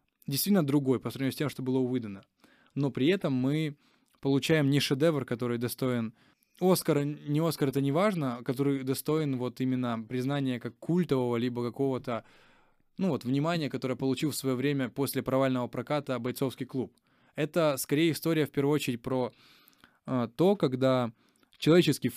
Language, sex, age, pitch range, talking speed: Ukrainian, male, 20-39, 125-145 Hz, 155 wpm